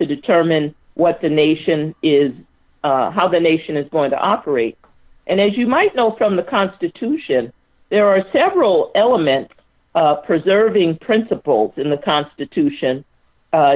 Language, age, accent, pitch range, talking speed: English, 50-69, American, 155-200 Hz, 145 wpm